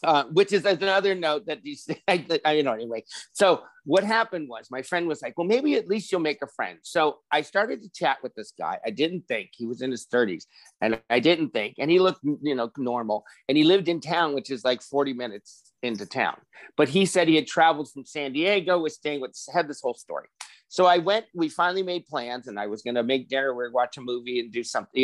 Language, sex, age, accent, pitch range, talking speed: English, male, 50-69, American, 130-185 Hz, 250 wpm